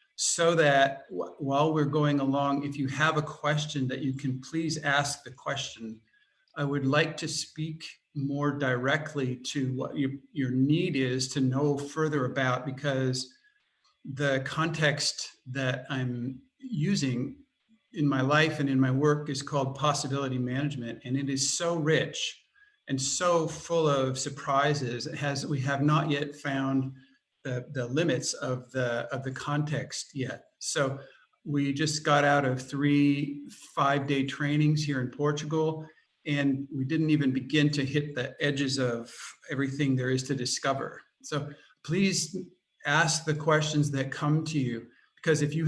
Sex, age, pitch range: male, 50-69, 135-150 Hz